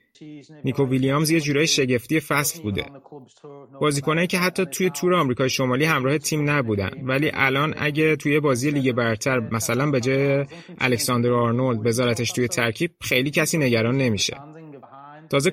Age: 30-49